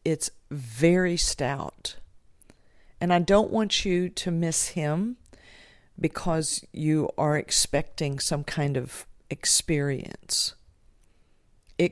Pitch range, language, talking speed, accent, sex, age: 140-165 Hz, English, 100 wpm, American, female, 50-69